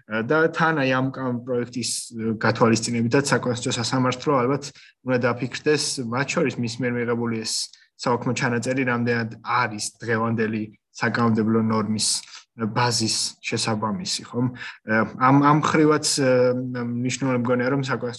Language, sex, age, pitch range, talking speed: English, male, 20-39, 115-130 Hz, 130 wpm